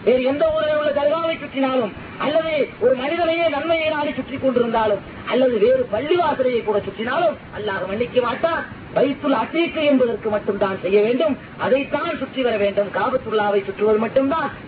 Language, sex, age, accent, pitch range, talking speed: Tamil, female, 30-49, native, 220-310 Hz, 145 wpm